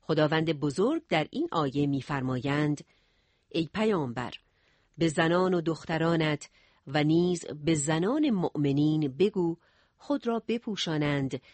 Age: 50-69